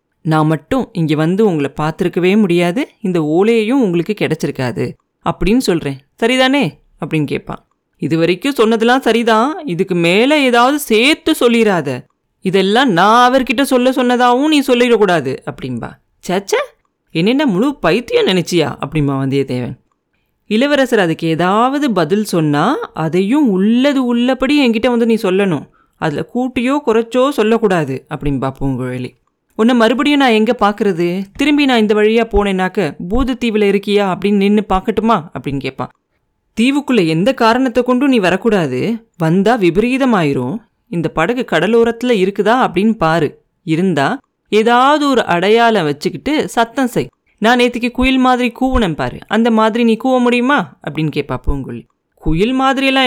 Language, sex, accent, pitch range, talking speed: Tamil, female, native, 165-250 Hz, 130 wpm